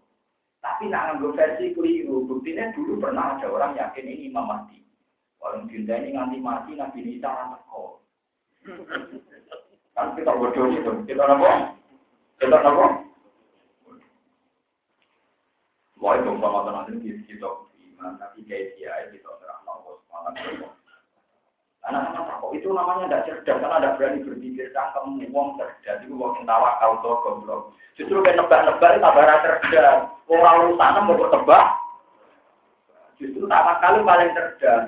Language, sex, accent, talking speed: Indonesian, male, native, 95 wpm